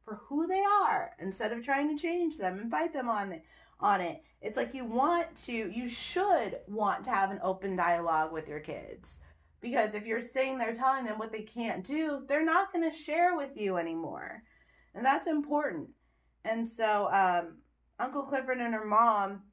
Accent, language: American, English